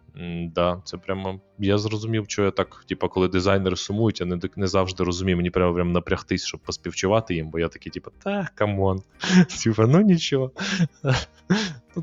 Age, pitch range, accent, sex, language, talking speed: 20-39, 85-115 Hz, native, male, Ukrainian, 170 wpm